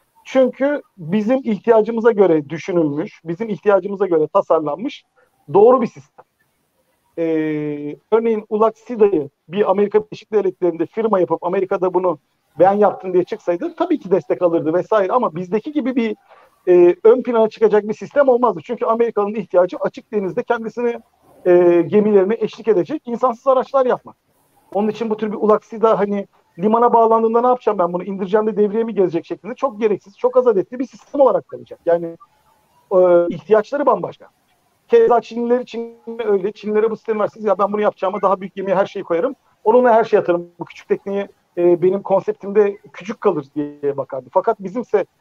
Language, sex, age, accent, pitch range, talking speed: Turkish, male, 50-69, native, 175-230 Hz, 160 wpm